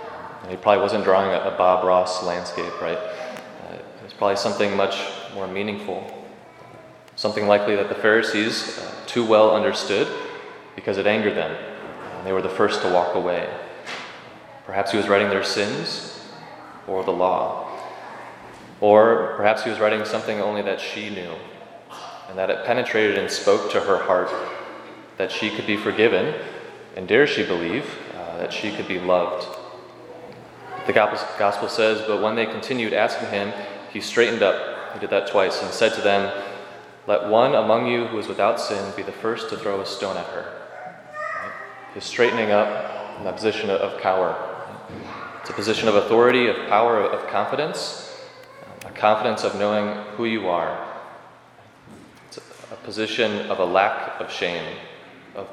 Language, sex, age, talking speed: English, male, 30-49, 165 wpm